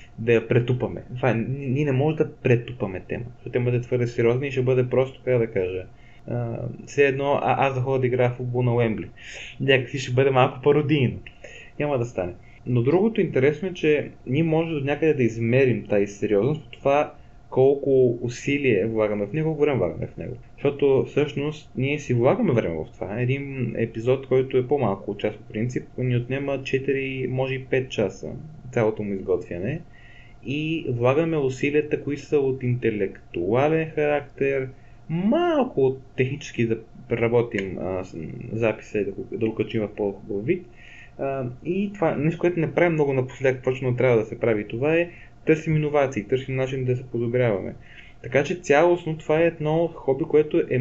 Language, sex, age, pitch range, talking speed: Bulgarian, male, 20-39, 120-145 Hz, 170 wpm